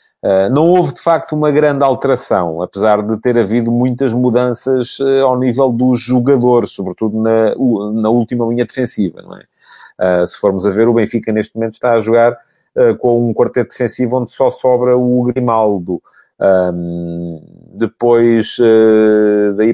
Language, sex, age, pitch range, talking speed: English, male, 40-59, 105-125 Hz, 145 wpm